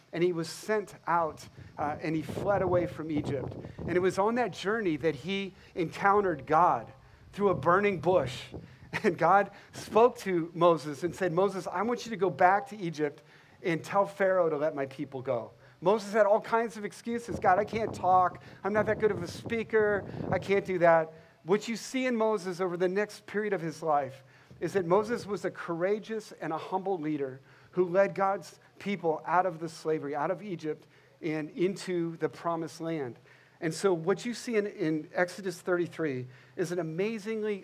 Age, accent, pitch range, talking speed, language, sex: 40-59, American, 155-200 Hz, 195 wpm, English, male